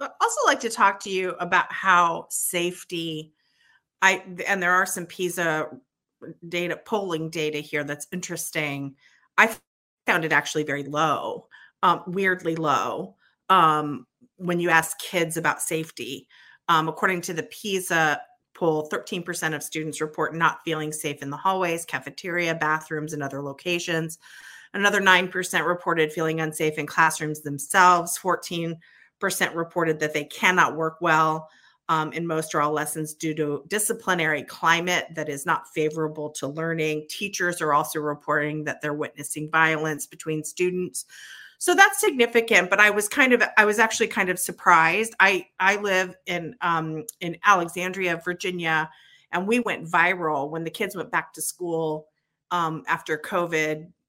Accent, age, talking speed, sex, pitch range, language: American, 40-59, 155 wpm, female, 155-180 Hz, English